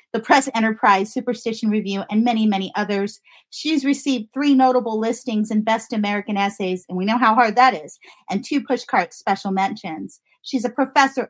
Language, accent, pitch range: English, American, 210-250 Hz